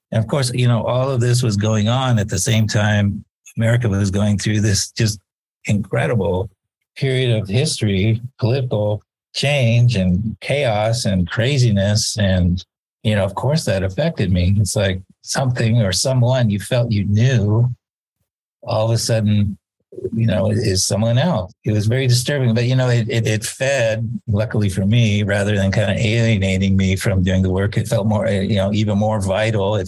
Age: 50-69